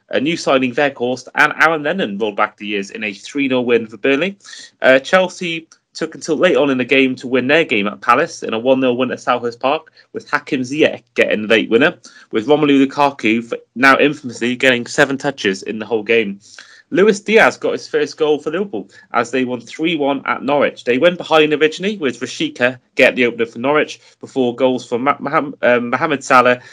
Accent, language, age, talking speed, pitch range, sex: British, English, 30-49, 205 wpm, 120-155 Hz, male